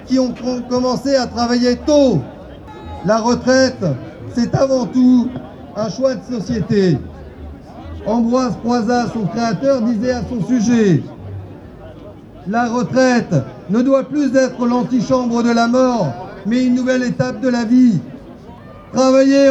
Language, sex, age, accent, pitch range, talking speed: French, male, 50-69, French, 205-265 Hz, 125 wpm